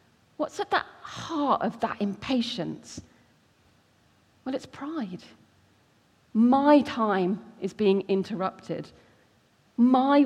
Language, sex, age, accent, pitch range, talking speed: English, female, 40-59, British, 180-245 Hz, 95 wpm